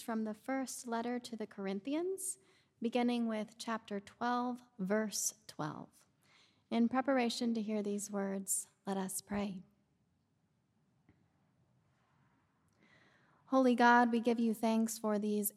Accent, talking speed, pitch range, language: American, 115 wpm, 200-245 Hz, English